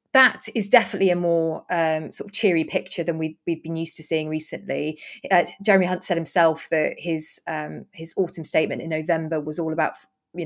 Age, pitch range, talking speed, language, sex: 20-39, 160-195 Hz, 200 wpm, English, female